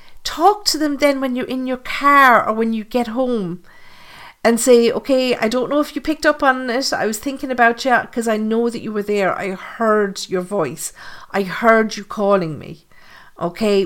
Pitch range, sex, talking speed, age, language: 185-240 Hz, female, 210 wpm, 50-69, English